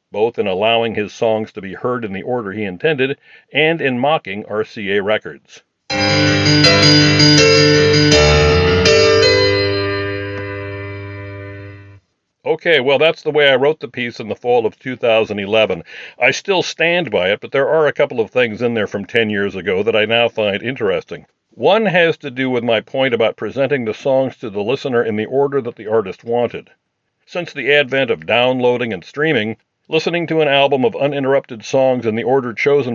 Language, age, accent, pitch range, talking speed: English, 50-69, American, 110-150 Hz, 170 wpm